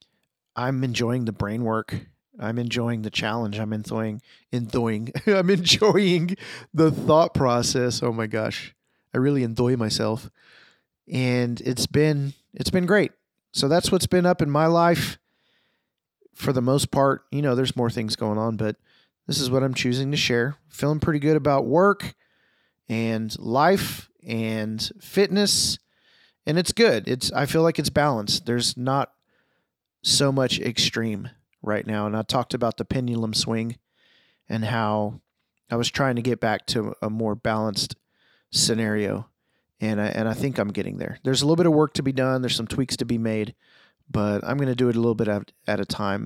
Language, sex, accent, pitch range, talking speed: English, male, American, 110-140 Hz, 180 wpm